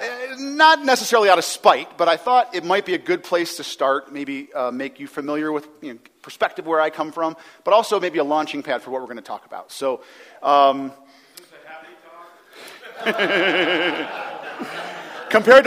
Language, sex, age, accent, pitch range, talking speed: English, male, 40-59, American, 135-180 Hz, 170 wpm